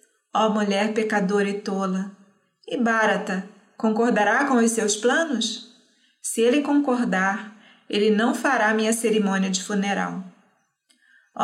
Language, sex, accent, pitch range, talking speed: Portuguese, female, Brazilian, 200-240 Hz, 125 wpm